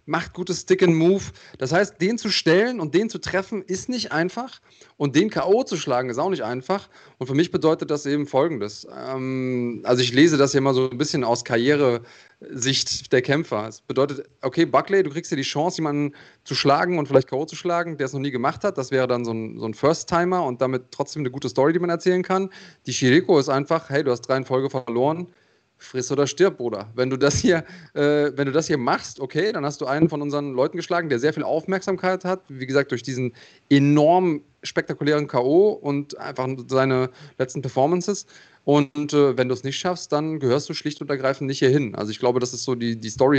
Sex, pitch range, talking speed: male, 130-170 Hz, 220 wpm